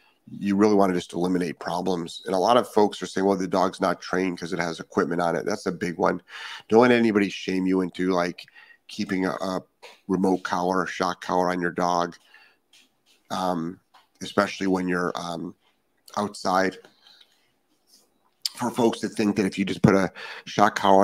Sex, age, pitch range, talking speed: male, 40-59, 90-95 Hz, 190 wpm